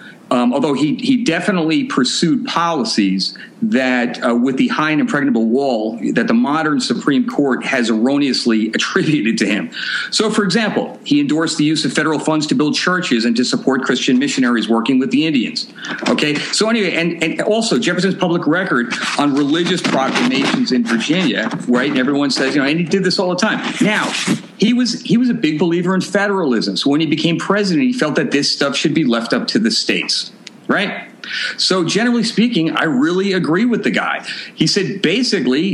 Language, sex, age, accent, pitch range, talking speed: English, male, 50-69, American, 155-245 Hz, 190 wpm